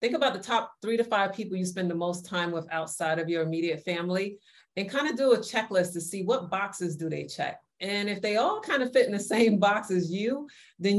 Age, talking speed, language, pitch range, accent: 30-49, 250 wpm, English, 160-195 Hz, American